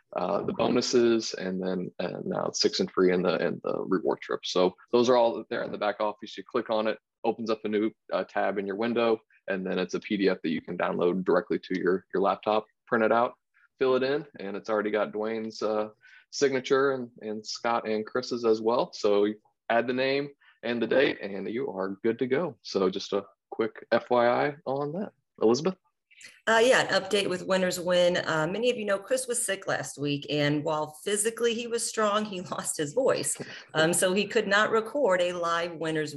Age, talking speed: 20-39, 215 wpm